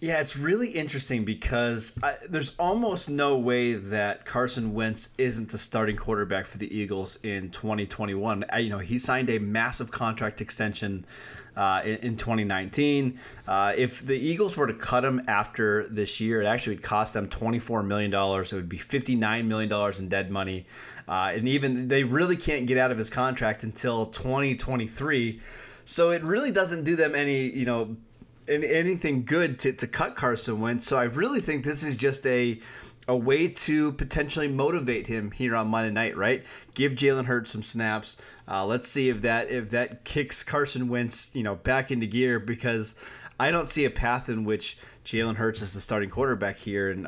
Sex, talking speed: male, 185 wpm